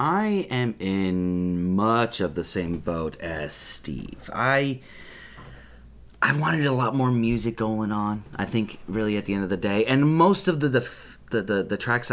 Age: 30-49